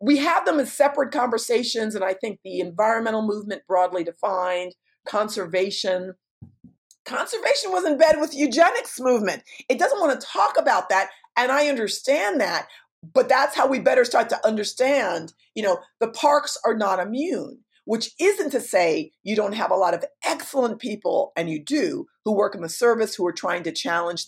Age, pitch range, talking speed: 50-69, 185-285 Hz, 185 wpm